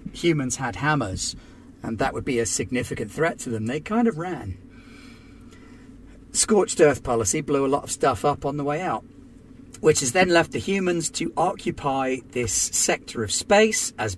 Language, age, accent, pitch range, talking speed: English, 40-59, British, 115-160 Hz, 180 wpm